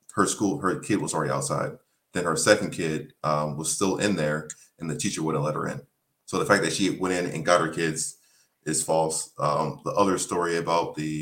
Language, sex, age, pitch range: English, male, 30-49, 75-85 Hz